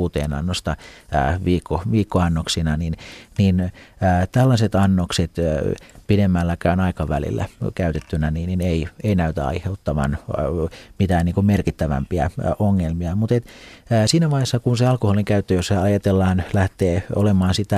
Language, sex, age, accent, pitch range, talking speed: Finnish, male, 40-59, native, 85-105 Hz, 130 wpm